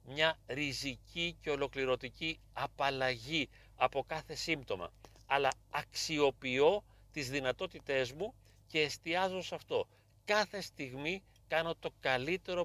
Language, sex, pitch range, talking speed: Greek, male, 125-170 Hz, 105 wpm